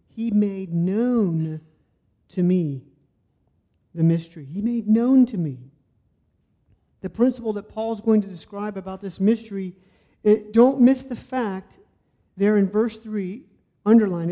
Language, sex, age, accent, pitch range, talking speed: English, male, 50-69, American, 170-230 Hz, 135 wpm